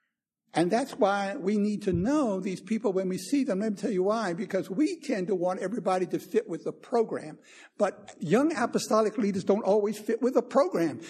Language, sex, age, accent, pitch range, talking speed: English, male, 60-79, American, 170-220 Hz, 210 wpm